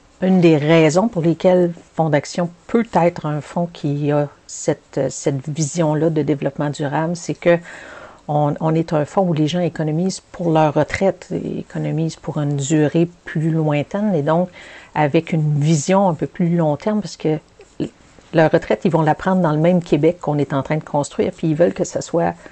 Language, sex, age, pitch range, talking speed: French, female, 50-69, 150-180 Hz, 195 wpm